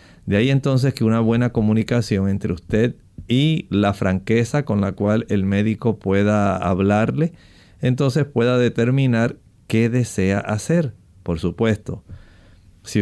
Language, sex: Spanish, male